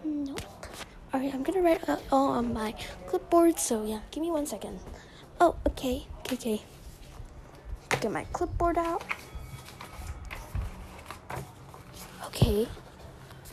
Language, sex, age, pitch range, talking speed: English, female, 10-29, 225-335 Hz, 110 wpm